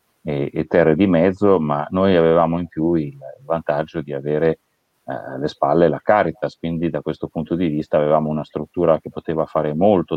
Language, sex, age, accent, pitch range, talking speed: Italian, male, 40-59, native, 75-85 Hz, 195 wpm